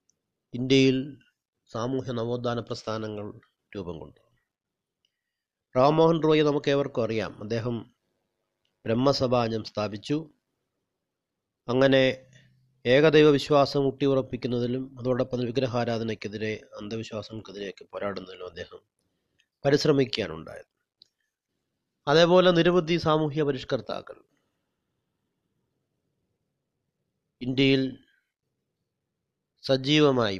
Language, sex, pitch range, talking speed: Malayalam, male, 110-140 Hz, 65 wpm